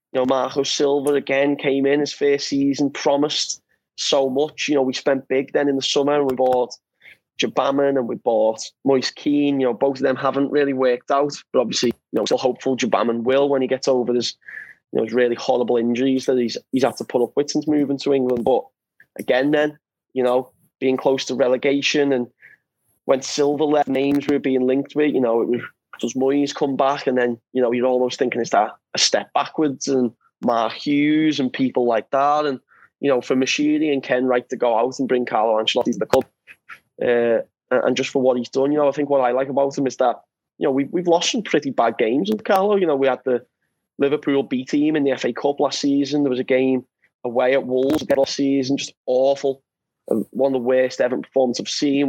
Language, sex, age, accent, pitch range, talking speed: English, male, 20-39, British, 130-140 Hz, 230 wpm